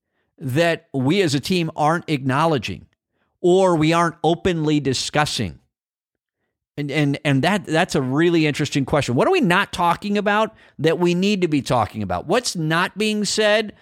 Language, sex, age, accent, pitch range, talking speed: English, male, 50-69, American, 140-185 Hz, 165 wpm